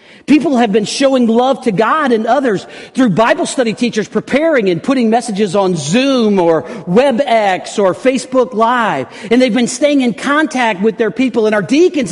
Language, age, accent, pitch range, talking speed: English, 50-69, American, 220-270 Hz, 180 wpm